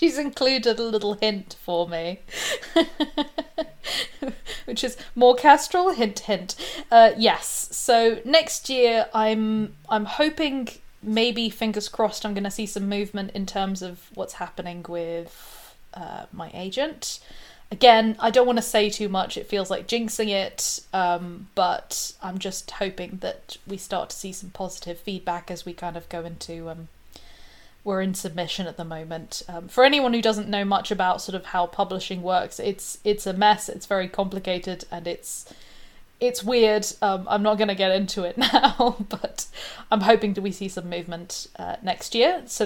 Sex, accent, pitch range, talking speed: female, British, 185-235 Hz, 170 wpm